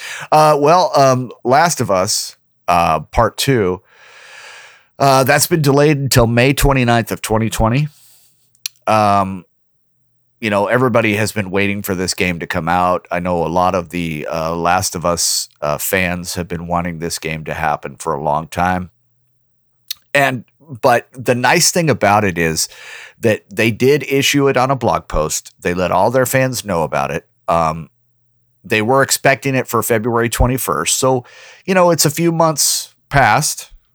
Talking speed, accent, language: 170 wpm, American, English